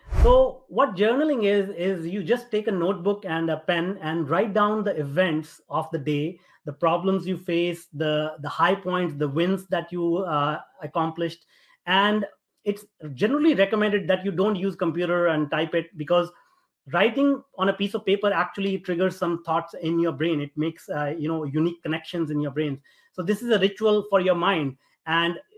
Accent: Indian